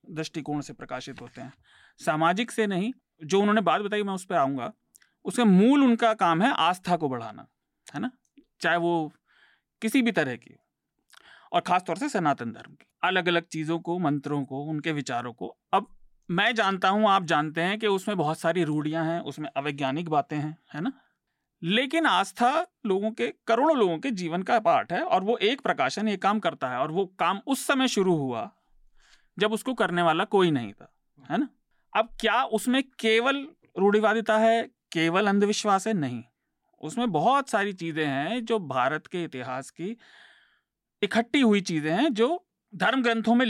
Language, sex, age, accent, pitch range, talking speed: Hindi, male, 40-59, native, 165-235 Hz, 180 wpm